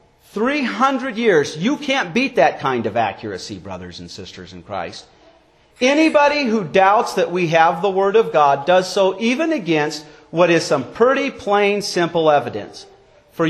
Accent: American